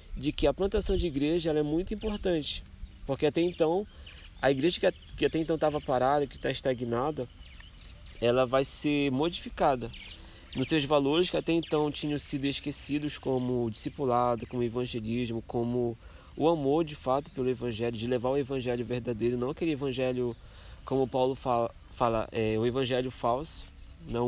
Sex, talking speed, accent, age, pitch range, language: male, 165 wpm, Brazilian, 20-39, 115-155 Hz, Portuguese